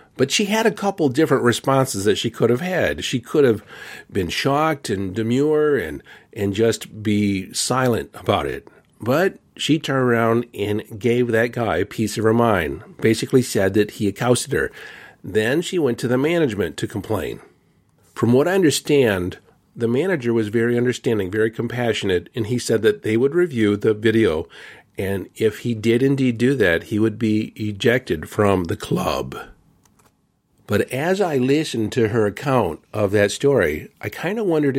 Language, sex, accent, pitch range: English, male, American, 110-130 Hz